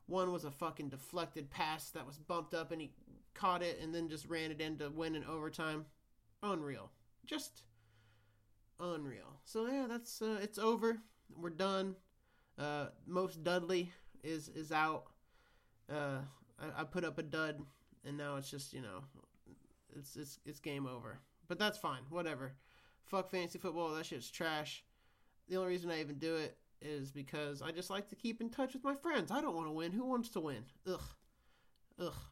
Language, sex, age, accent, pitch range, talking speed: English, male, 30-49, American, 150-190 Hz, 185 wpm